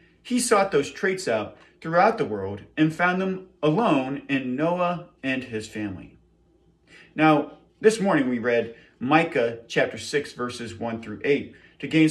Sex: male